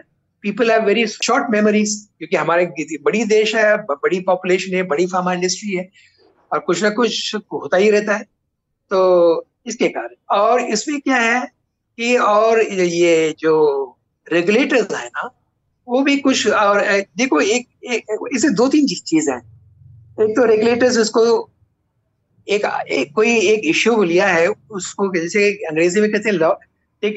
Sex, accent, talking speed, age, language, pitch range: male, native, 145 wpm, 60-79, Hindi, 175-225 Hz